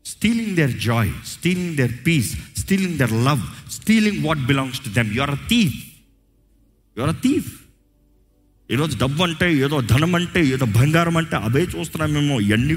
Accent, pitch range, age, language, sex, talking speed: native, 110-185 Hz, 50-69, Telugu, male, 155 wpm